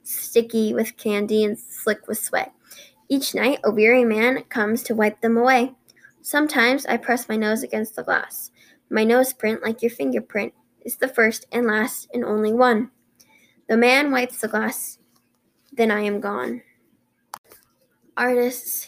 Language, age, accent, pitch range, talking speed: English, 10-29, American, 215-260 Hz, 155 wpm